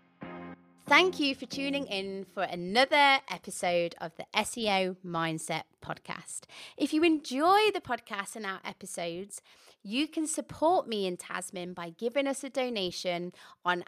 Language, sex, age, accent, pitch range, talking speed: English, female, 20-39, British, 180-250 Hz, 145 wpm